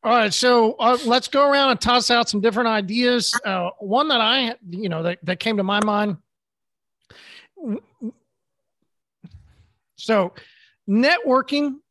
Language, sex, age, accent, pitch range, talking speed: English, male, 40-59, American, 175-225 Hz, 135 wpm